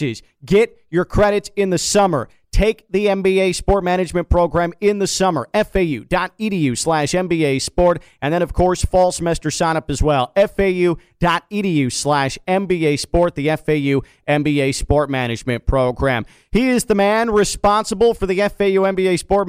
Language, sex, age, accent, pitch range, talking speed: English, male, 40-59, American, 150-185 Hz, 145 wpm